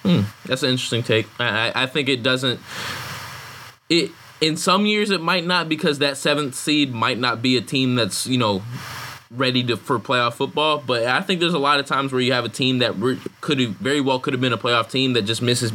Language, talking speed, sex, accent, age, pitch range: English, 235 wpm, male, American, 20-39, 110-140 Hz